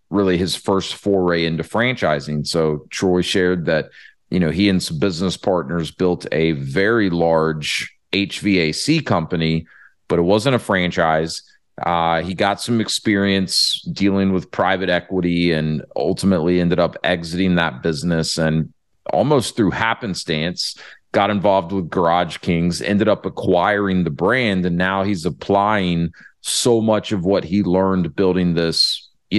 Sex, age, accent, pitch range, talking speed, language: male, 30-49, American, 85-100 Hz, 145 wpm, English